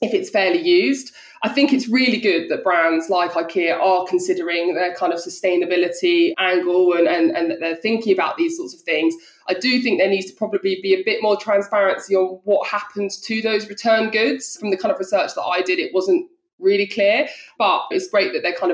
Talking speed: 220 wpm